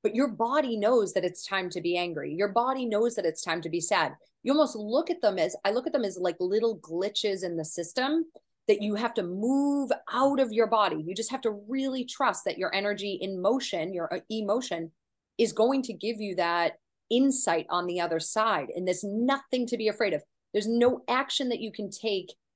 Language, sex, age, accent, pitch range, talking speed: English, female, 30-49, American, 180-250 Hz, 220 wpm